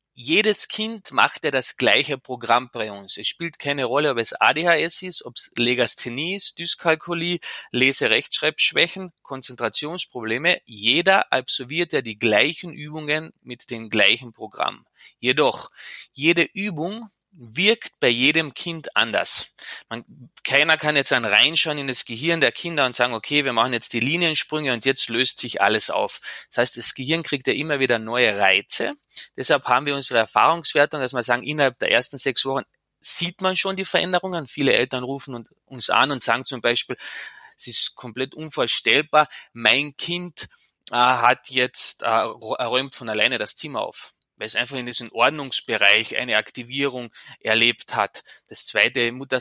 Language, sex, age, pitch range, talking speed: German, male, 20-39, 120-160 Hz, 160 wpm